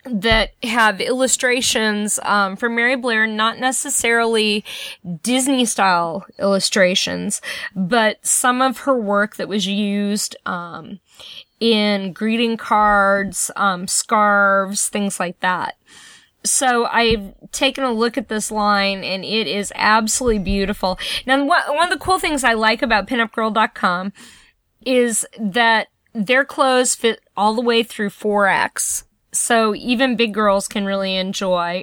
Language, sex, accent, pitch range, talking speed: English, female, American, 195-240 Hz, 130 wpm